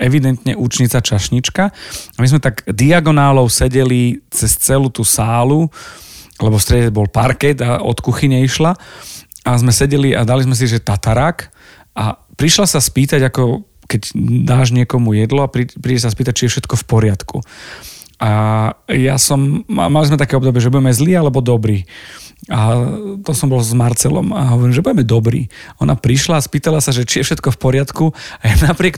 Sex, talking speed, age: male, 180 wpm, 40-59